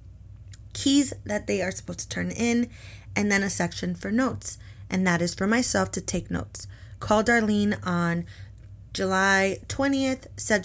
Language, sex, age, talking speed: English, female, 20-39, 160 wpm